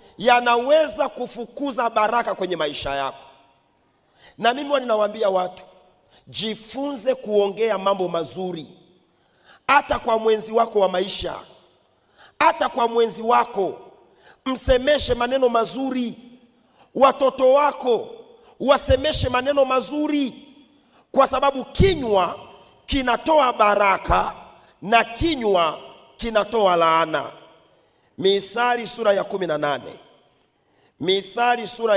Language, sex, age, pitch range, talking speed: Swahili, male, 40-59, 190-265 Hz, 90 wpm